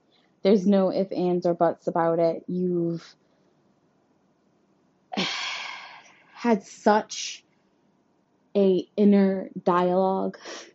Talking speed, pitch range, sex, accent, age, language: 80 wpm, 165-195 Hz, female, American, 20-39, English